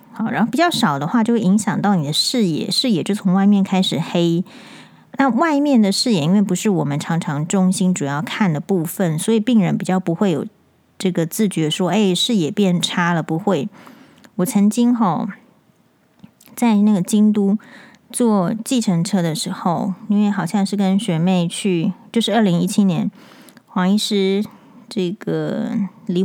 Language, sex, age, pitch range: Chinese, female, 30-49, 185-225 Hz